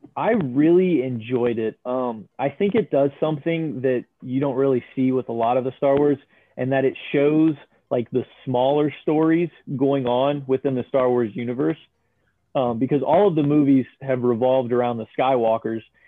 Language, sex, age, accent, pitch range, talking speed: English, male, 30-49, American, 120-145 Hz, 180 wpm